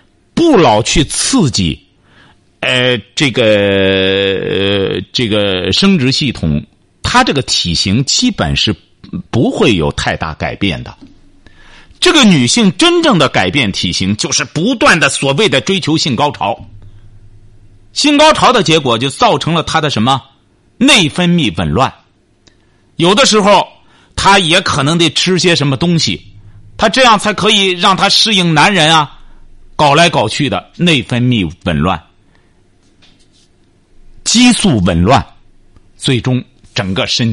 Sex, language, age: male, Chinese, 50-69